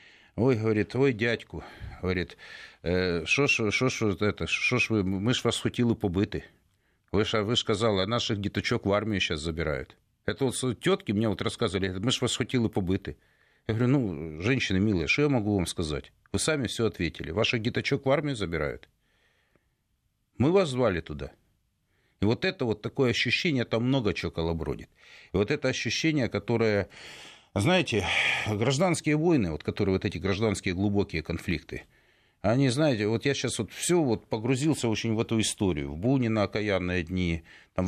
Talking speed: 165 wpm